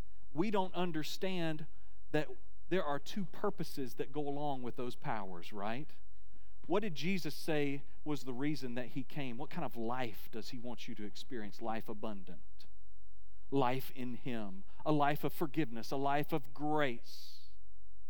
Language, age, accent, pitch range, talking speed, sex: English, 40-59, American, 95-130 Hz, 160 wpm, male